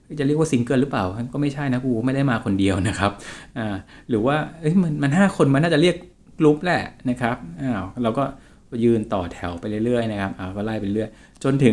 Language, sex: Thai, male